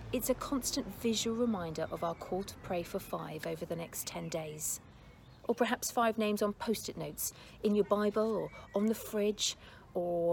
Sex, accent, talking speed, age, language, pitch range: female, British, 185 wpm, 40-59, English, 165-220 Hz